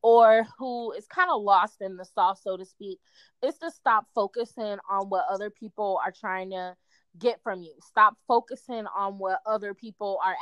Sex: female